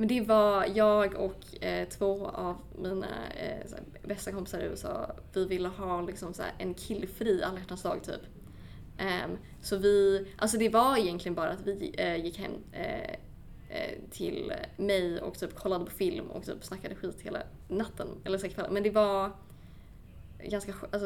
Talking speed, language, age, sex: 170 wpm, Swedish, 20-39, female